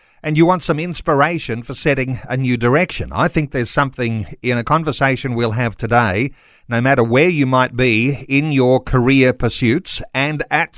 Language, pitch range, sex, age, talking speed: English, 125-165 Hz, male, 50-69, 180 wpm